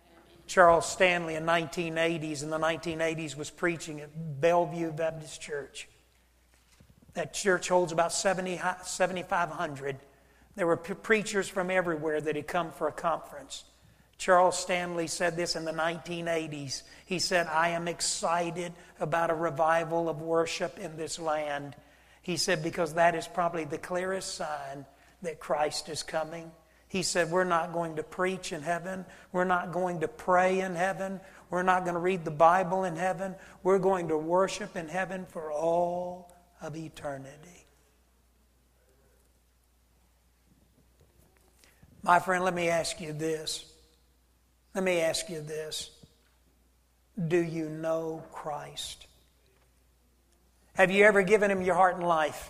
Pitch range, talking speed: 150-180 Hz, 145 wpm